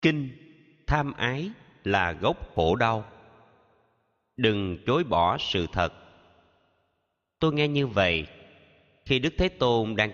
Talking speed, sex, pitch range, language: 125 wpm, male, 90-130 Hz, Vietnamese